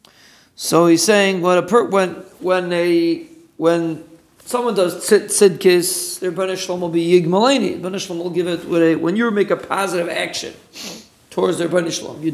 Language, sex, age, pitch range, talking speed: English, male, 40-59, 165-195 Hz, 160 wpm